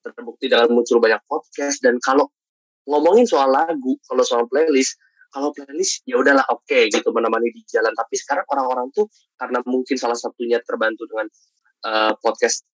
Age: 20-39